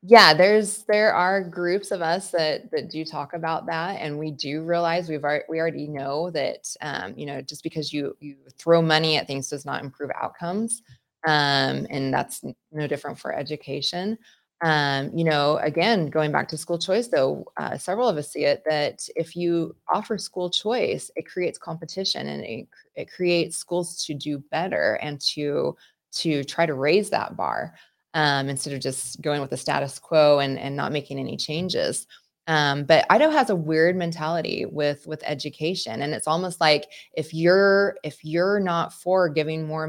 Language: English